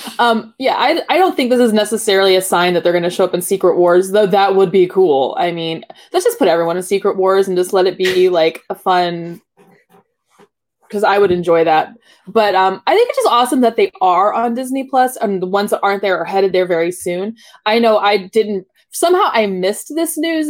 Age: 20-39